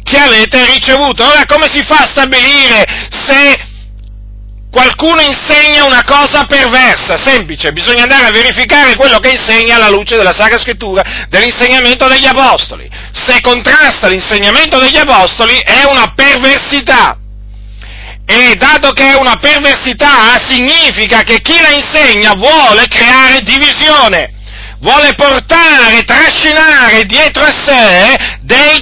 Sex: male